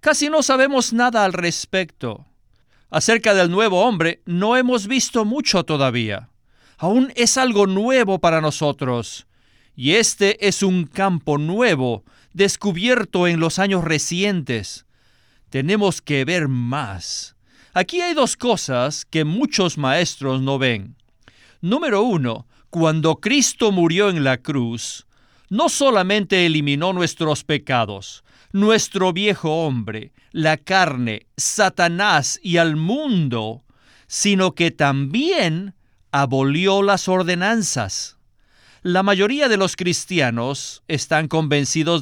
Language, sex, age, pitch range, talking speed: Spanish, male, 50-69, 135-205 Hz, 115 wpm